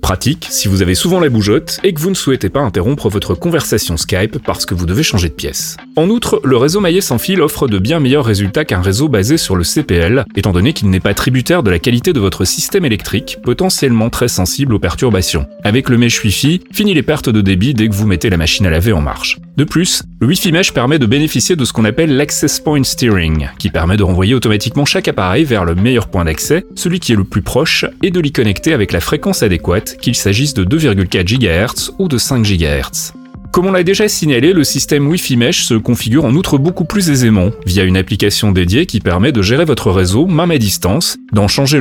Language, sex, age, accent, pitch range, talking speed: French, male, 30-49, French, 100-150 Hz, 230 wpm